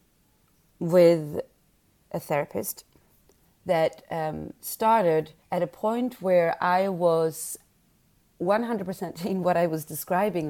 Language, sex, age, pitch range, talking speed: English, female, 30-49, 160-205 Hz, 110 wpm